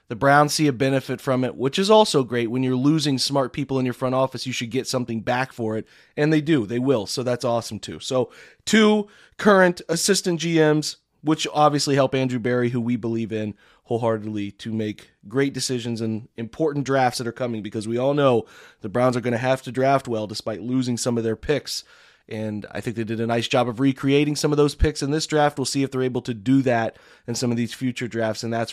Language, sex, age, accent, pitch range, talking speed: English, male, 30-49, American, 115-140 Hz, 235 wpm